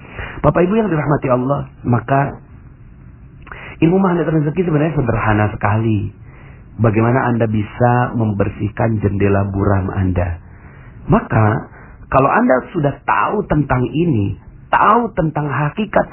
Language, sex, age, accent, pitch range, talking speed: Indonesian, male, 40-59, native, 105-145 Hz, 110 wpm